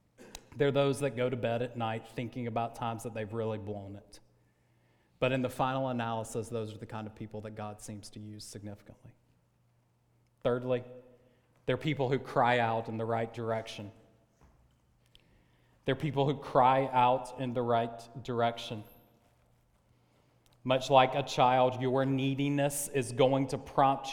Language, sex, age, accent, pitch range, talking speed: English, male, 30-49, American, 115-135 Hz, 155 wpm